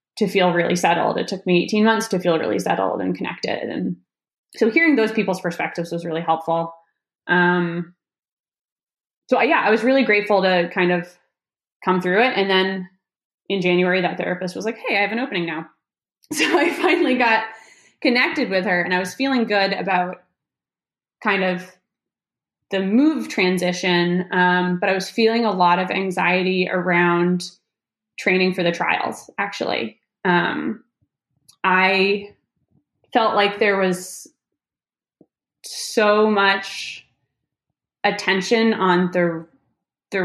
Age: 20-39